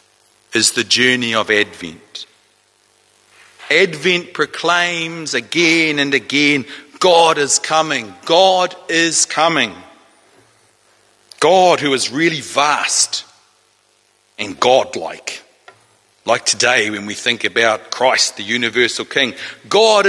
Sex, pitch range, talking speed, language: male, 125-175 Hz, 105 wpm, English